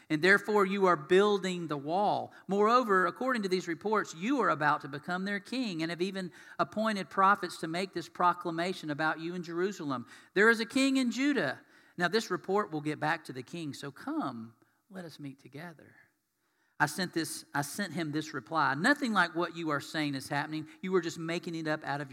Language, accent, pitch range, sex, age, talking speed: English, American, 150-185 Hz, male, 40-59, 210 wpm